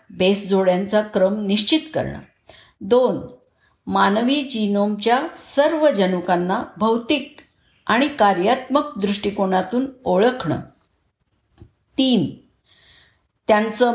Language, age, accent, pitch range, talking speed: Marathi, 50-69, native, 200-260 Hz, 70 wpm